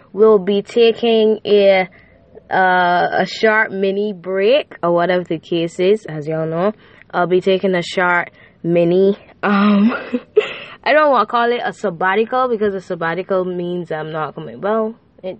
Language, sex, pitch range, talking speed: English, female, 180-230 Hz, 160 wpm